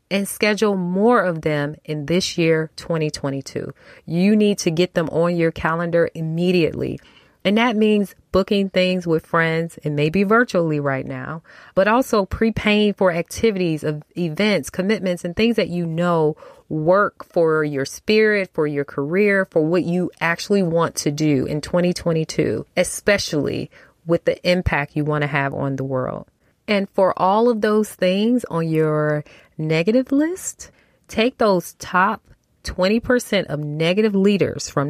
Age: 30-49